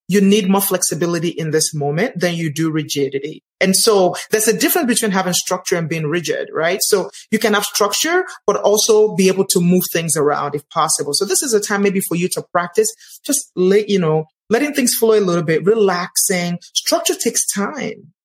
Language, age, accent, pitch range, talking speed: English, 30-49, Nigerian, 175-215 Hz, 205 wpm